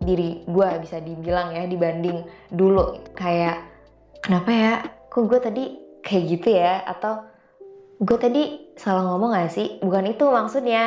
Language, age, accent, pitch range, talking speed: Indonesian, 20-39, native, 175-215 Hz, 145 wpm